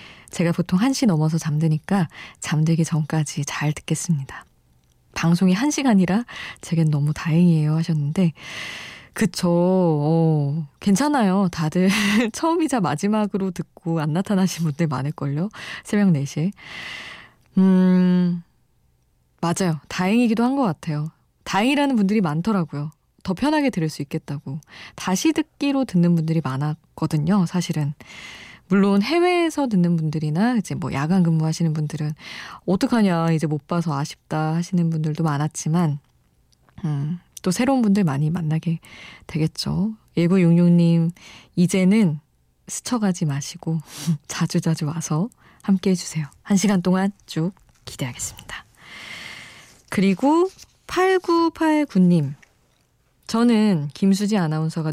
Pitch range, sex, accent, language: 155-200 Hz, female, native, Korean